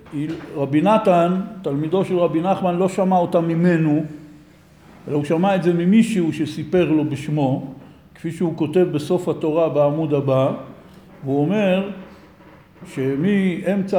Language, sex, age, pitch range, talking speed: Hebrew, male, 60-79, 155-195 Hz, 125 wpm